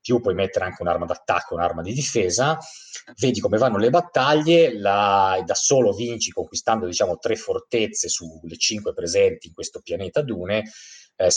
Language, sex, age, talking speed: Italian, male, 30-49, 165 wpm